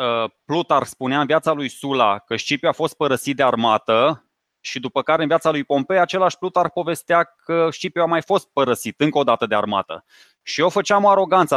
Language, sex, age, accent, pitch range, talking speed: Romanian, male, 20-39, native, 130-175 Hz, 200 wpm